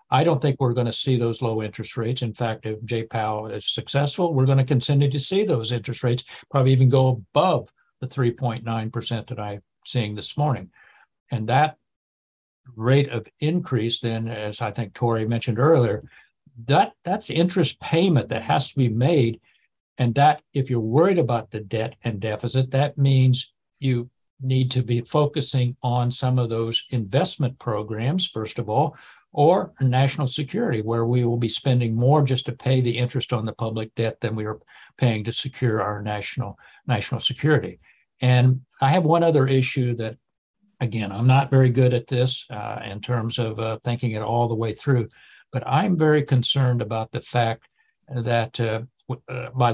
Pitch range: 115-135 Hz